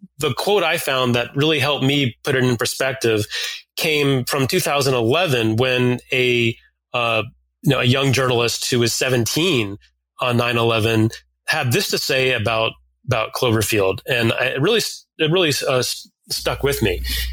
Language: English